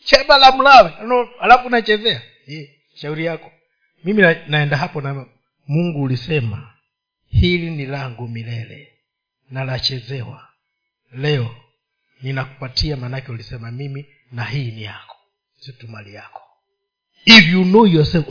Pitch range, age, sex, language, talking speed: 125-175 Hz, 50-69, male, Swahili, 120 wpm